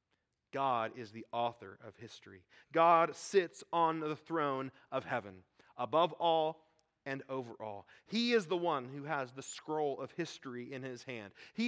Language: English